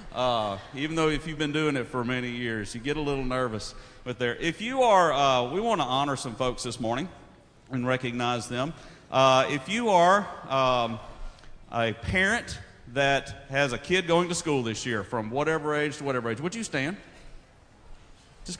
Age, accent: 40-59, American